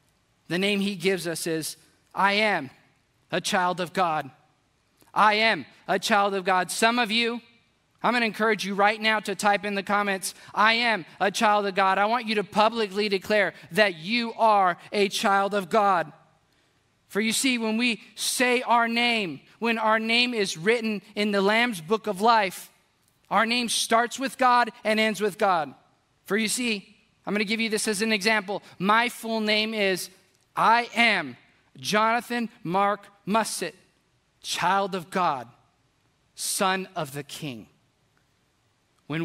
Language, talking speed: English, 165 wpm